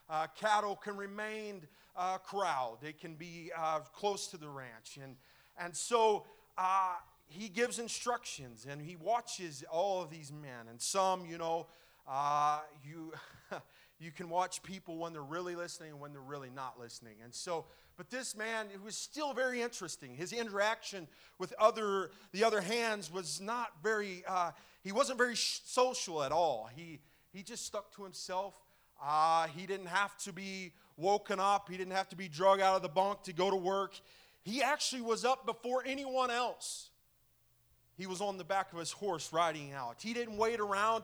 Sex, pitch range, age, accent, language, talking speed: male, 160-210 Hz, 30-49, American, English, 185 wpm